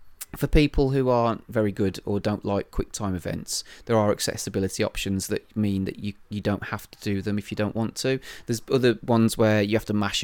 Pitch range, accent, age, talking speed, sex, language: 100-120 Hz, British, 30-49, 225 wpm, male, English